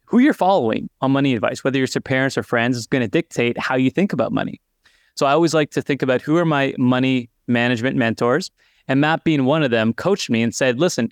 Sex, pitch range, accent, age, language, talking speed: male, 130-160 Hz, American, 20-39, English, 245 wpm